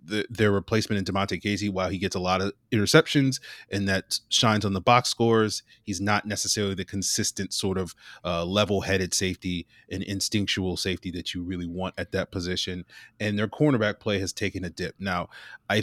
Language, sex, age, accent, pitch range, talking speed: English, male, 30-49, American, 95-110 Hz, 185 wpm